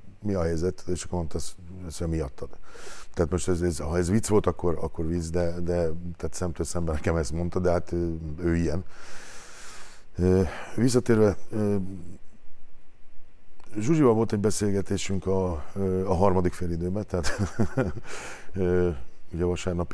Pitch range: 85-95 Hz